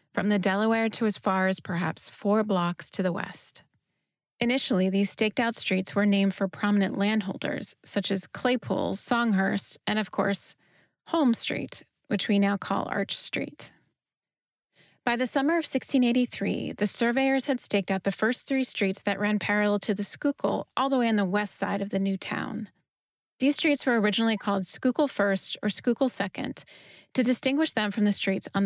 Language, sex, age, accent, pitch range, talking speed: English, female, 30-49, American, 195-245 Hz, 180 wpm